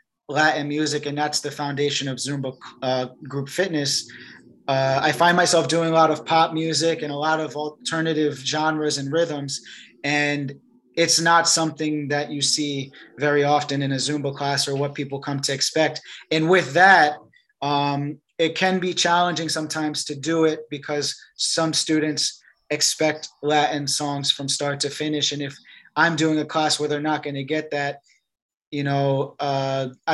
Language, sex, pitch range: English, male, 140-155 Hz